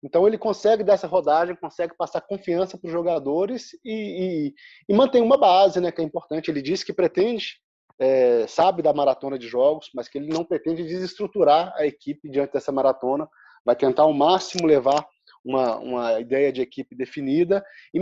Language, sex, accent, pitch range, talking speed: Portuguese, male, Brazilian, 160-220 Hz, 185 wpm